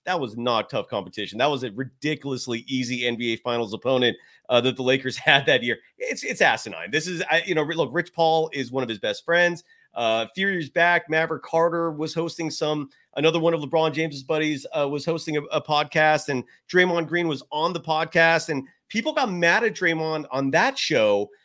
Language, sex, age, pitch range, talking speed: English, male, 30-49, 145-190 Hz, 205 wpm